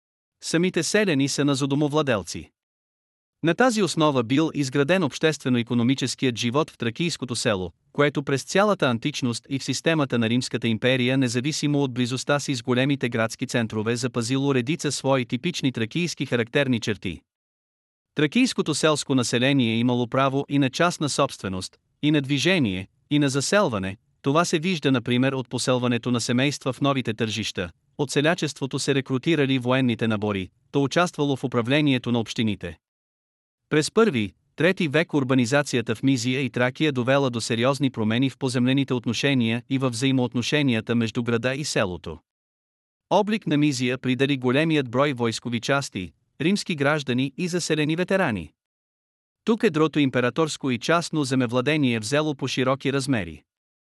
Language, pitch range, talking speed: Bulgarian, 120-150 Hz, 140 wpm